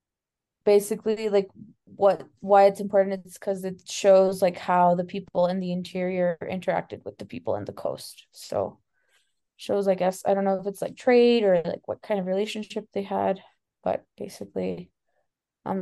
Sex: female